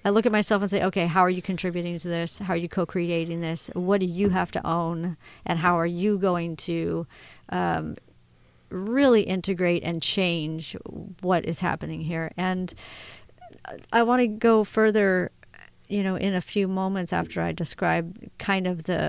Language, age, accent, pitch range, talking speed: English, 40-59, American, 170-195 Hz, 180 wpm